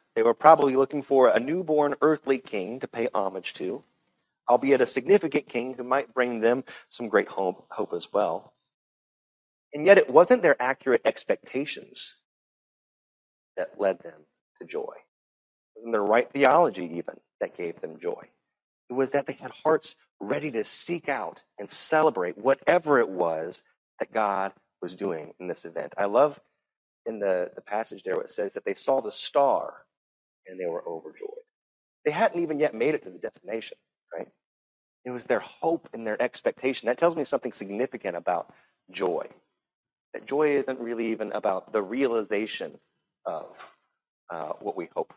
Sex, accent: male, American